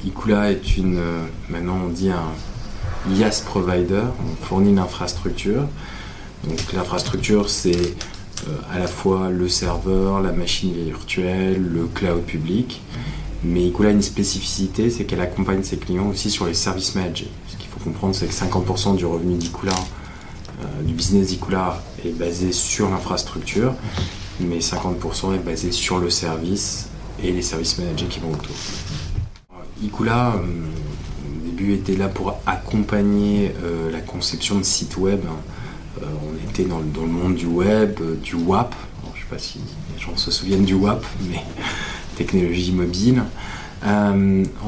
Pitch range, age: 85-100 Hz, 20-39